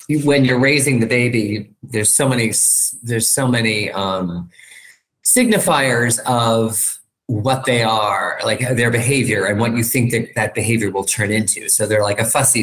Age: 30-49